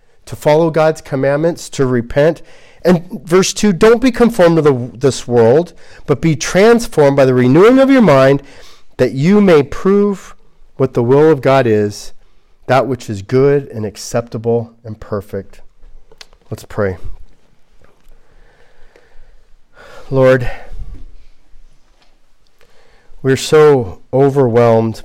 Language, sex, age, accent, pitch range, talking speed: English, male, 40-59, American, 110-140 Hz, 115 wpm